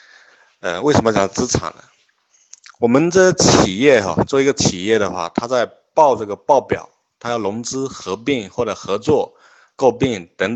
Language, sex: Chinese, male